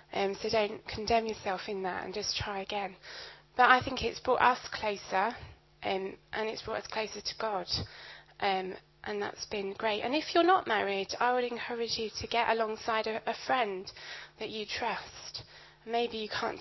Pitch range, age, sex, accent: 195-225 Hz, 20-39, female, British